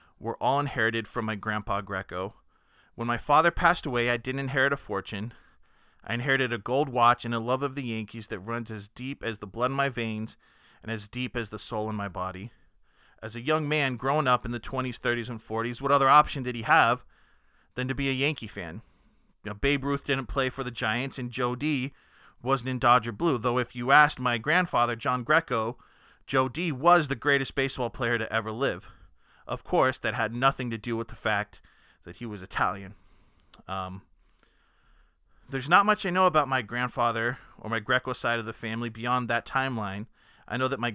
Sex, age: male, 30-49